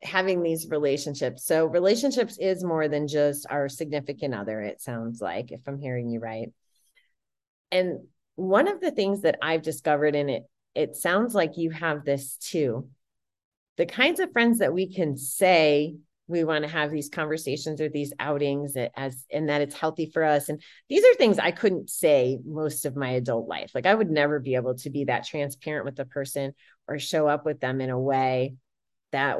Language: English